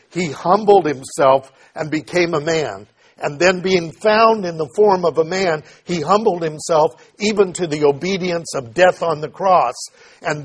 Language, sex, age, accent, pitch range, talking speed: English, male, 50-69, American, 145-195 Hz, 170 wpm